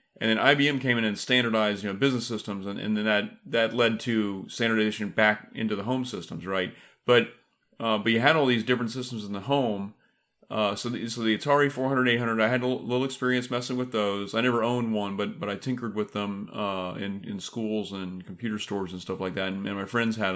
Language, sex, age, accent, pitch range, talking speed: English, male, 30-49, American, 105-125 Hz, 240 wpm